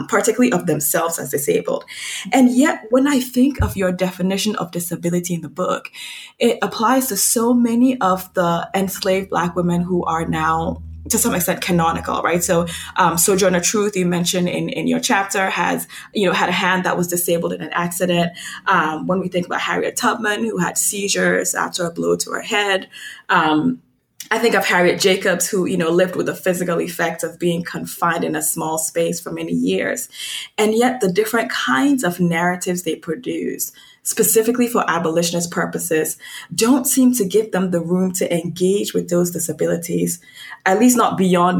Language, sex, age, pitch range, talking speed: English, female, 20-39, 170-220 Hz, 185 wpm